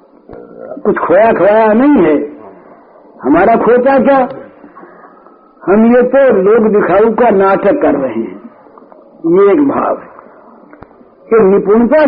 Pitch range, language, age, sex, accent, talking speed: 210-310 Hz, Hindi, 60-79, male, native, 115 wpm